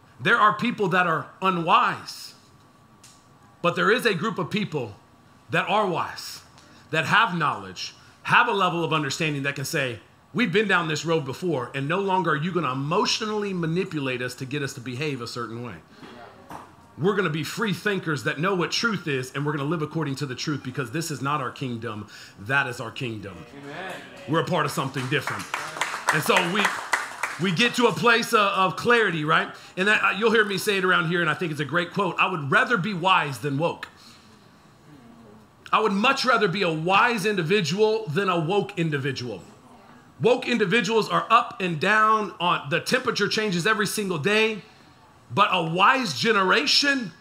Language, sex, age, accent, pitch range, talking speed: English, male, 40-59, American, 140-205 Hz, 190 wpm